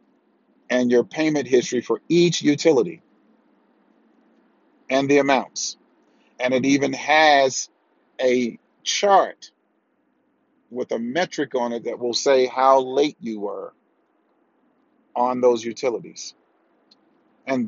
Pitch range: 130-220 Hz